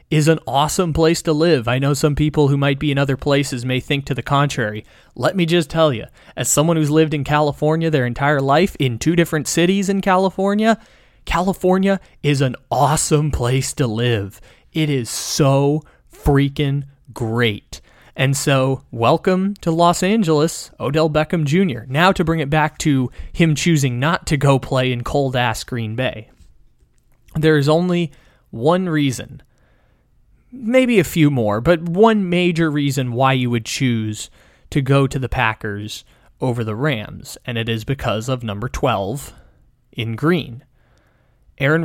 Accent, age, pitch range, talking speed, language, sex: American, 20-39, 125-160 Hz, 160 wpm, English, male